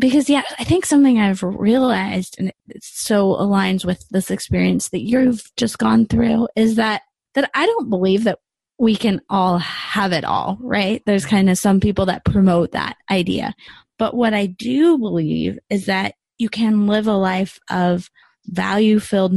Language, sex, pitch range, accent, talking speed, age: English, female, 180-220 Hz, American, 175 wpm, 20-39